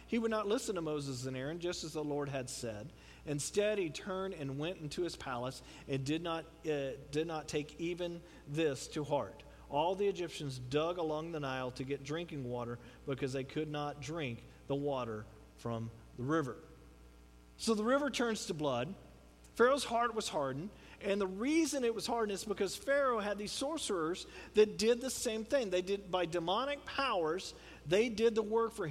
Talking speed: 190 wpm